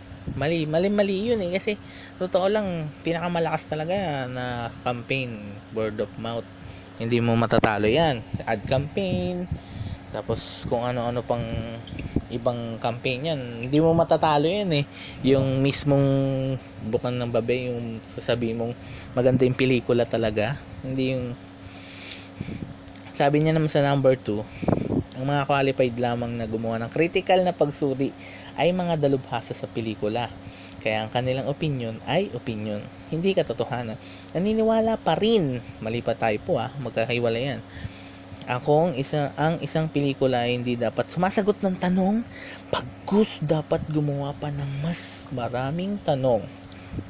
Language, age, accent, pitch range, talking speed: Filipino, 20-39, native, 115-150 Hz, 135 wpm